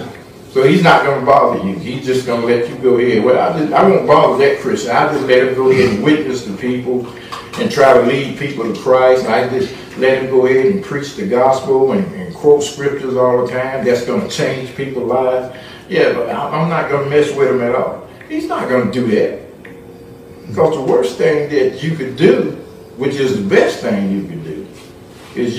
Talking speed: 220 wpm